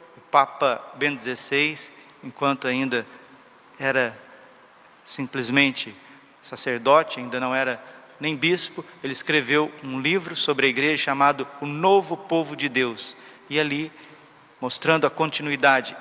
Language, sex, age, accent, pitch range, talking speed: Portuguese, male, 50-69, Brazilian, 135-165 Hz, 120 wpm